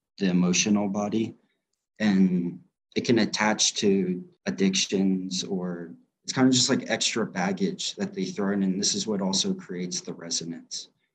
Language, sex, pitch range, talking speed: English, male, 90-105 Hz, 155 wpm